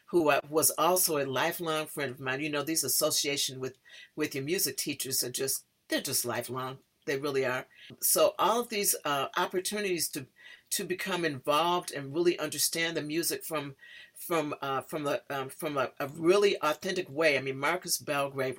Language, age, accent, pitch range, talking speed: English, 50-69, American, 145-185 Hz, 180 wpm